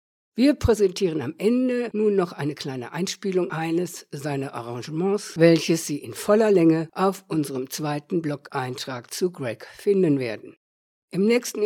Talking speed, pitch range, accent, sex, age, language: 140 wpm, 150-195 Hz, German, female, 60-79, German